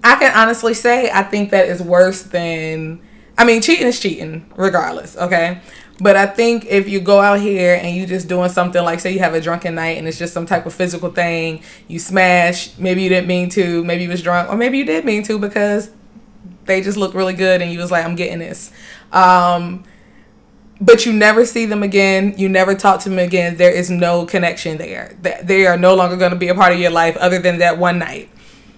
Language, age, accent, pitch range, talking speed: English, 20-39, American, 170-200 Hz, 230 wpm